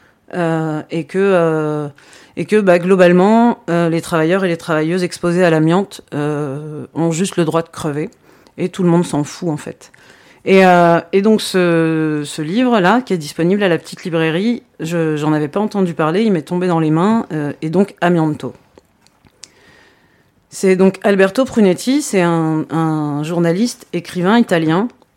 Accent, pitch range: French, 155-185 Hz